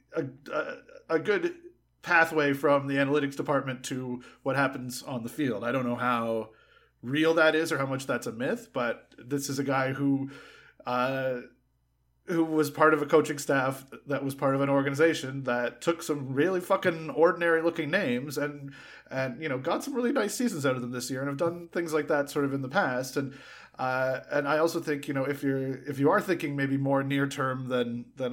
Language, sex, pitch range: English, male, 130-150 Hz